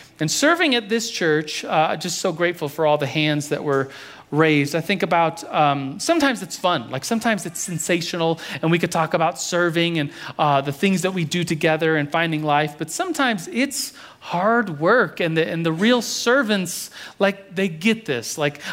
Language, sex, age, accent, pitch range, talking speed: English, male, 40-59, American, 165-235 Hz, 190 wpm